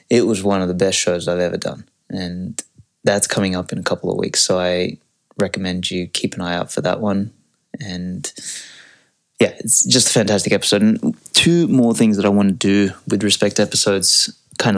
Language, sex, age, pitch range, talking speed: English, male, 20-39, 90-100 Hz, 205 wpm